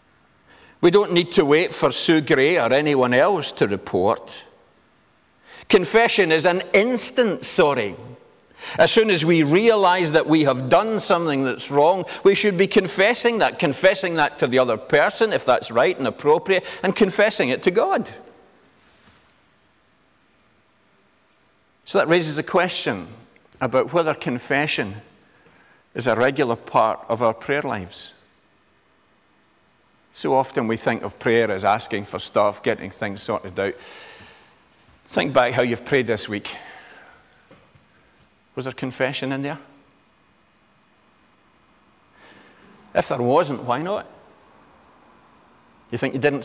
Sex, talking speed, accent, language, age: male, 130 wpm, British, English, 50-69